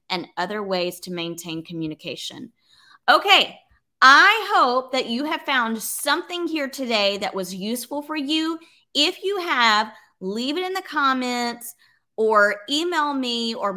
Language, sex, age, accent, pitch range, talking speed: English, female, 30-49, American, 195-285 Hz, 145 wpm